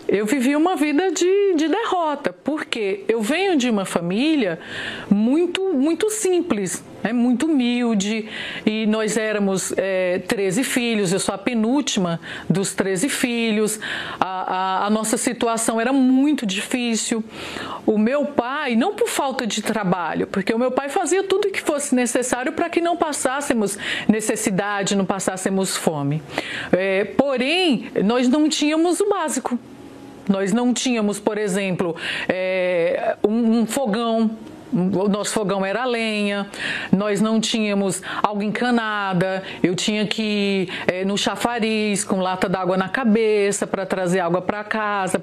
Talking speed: 135 wpm